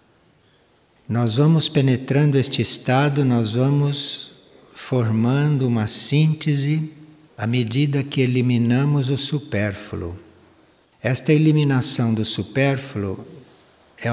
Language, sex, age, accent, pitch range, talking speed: Portuguese, male, 60-79, Brazilian, 115-140 Hz, 90 wpm